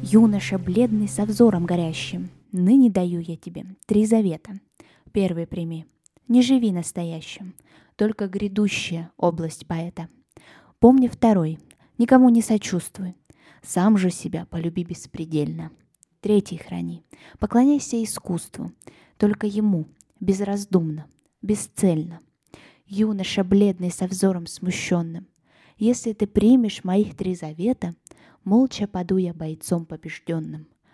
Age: 20-39